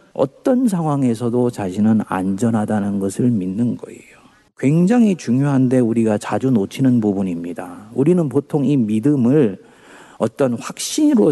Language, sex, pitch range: Korean, male, 115-160 Hz